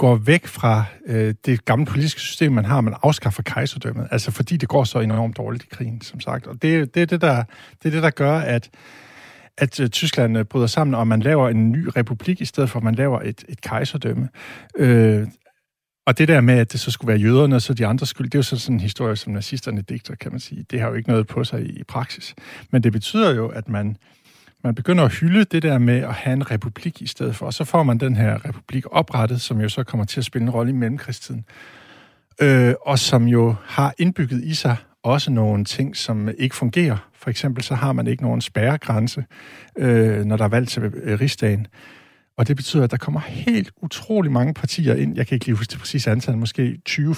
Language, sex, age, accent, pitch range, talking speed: Danish, male, 60-79, native, 115-140 Hz, 230 wpm